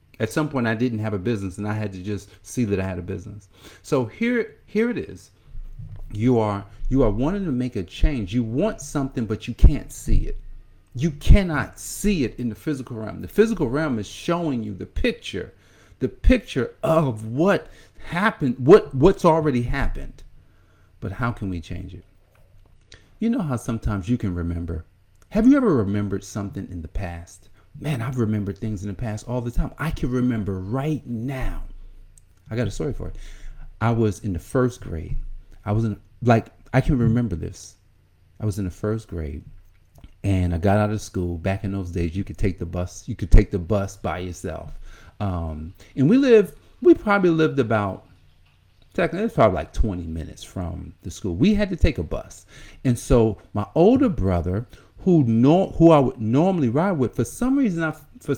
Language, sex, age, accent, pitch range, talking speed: English, male, 50-69, American, 95-135 Hz, 195 wpm